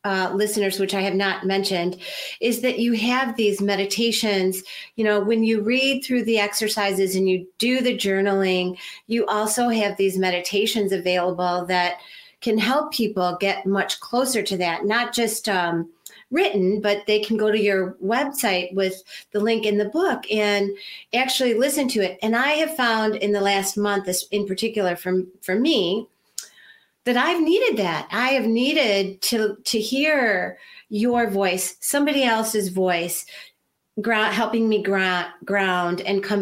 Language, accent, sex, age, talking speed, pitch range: English, American, female, 40-59, 160 wpm, 190-230 Hz